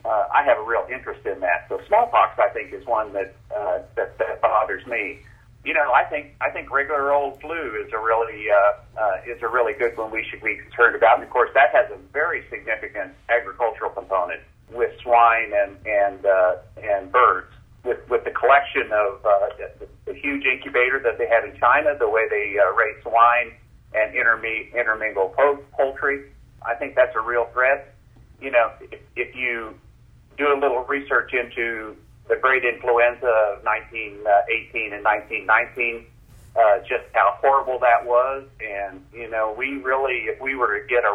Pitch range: 110-135 Hz